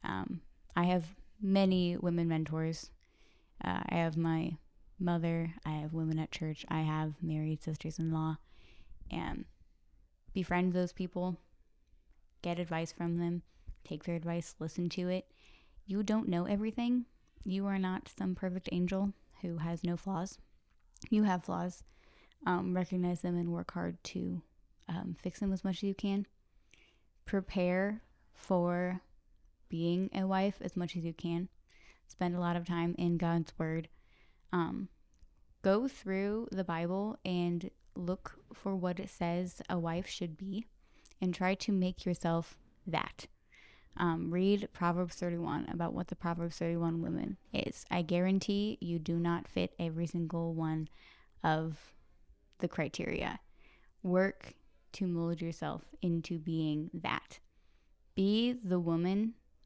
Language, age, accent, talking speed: English, 20-39, American, 140 wpm